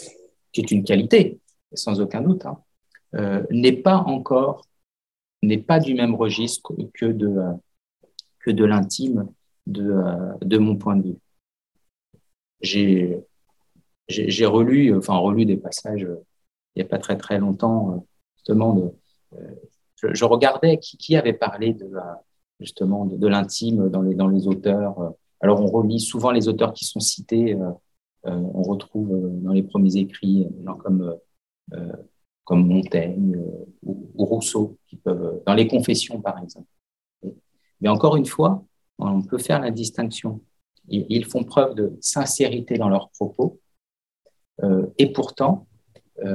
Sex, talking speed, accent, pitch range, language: male, 140 wpm, French, 95-115 Hz, French